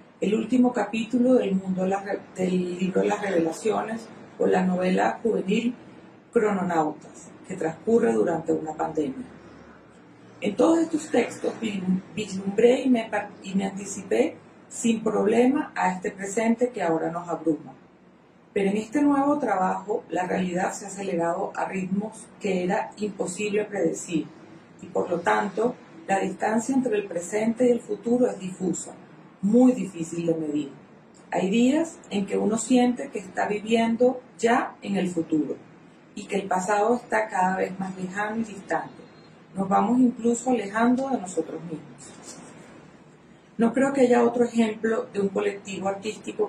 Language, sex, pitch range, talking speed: Spanish, female, 185-230 Hz, 150 wpm